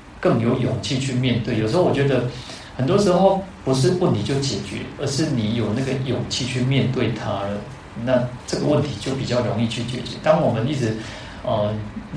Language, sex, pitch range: Chinese, male, 110-130 Hz